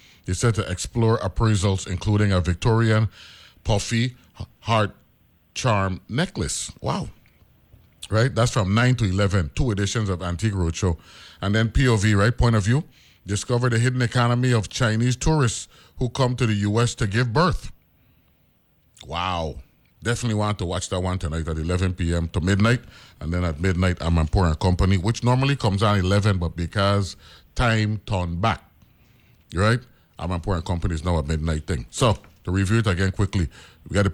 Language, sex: English, male